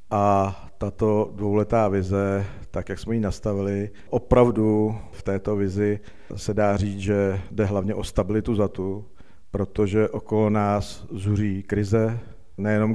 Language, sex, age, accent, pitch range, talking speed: Czech, male, 50-69, native, 95-105 Hz, 135 wpm